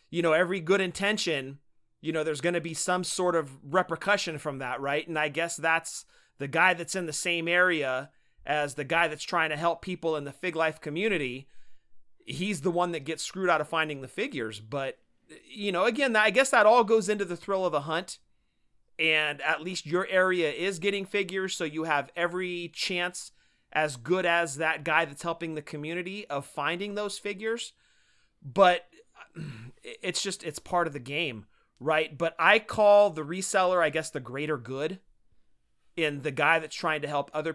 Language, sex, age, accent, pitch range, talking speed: English, male, 30-49, American, 145-180 Hz, 195 wpm